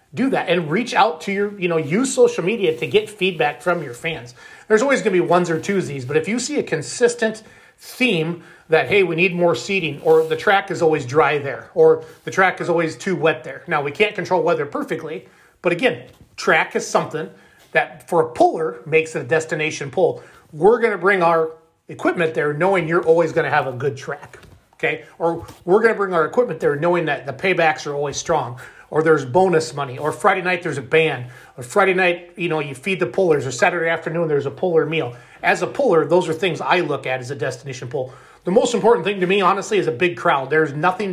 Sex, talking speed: male, 230 wpm